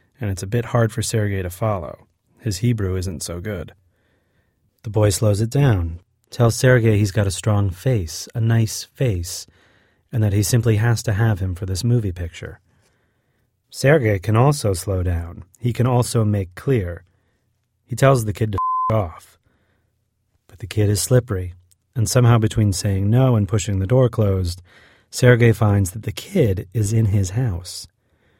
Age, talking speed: 30-49, 175 wpm